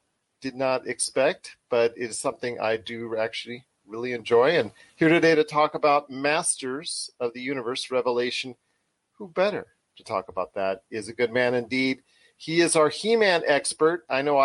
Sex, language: male, English